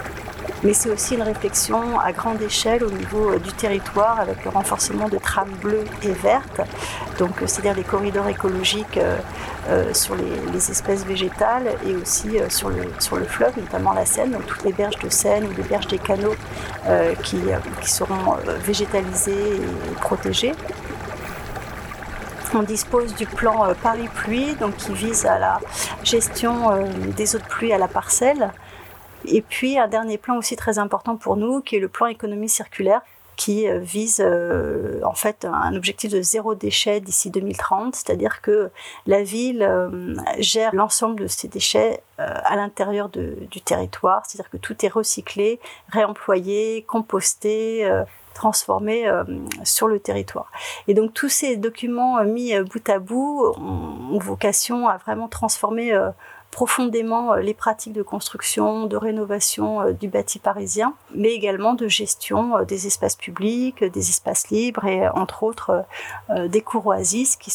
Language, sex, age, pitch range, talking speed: French, female, 40-59, 200-230 Hz, 170 wpm